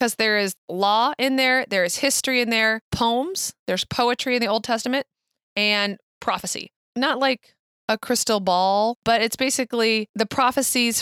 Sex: female